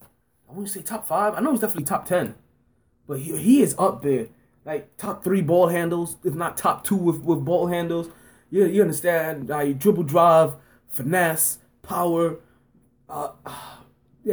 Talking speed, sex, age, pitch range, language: 170 wpm, male, 20-39, 135-200 Hz, English